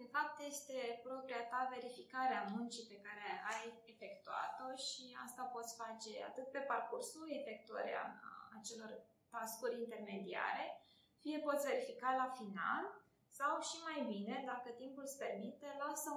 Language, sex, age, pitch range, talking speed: Romanian, female, 20-39, 235-295 Hz, 135 wpm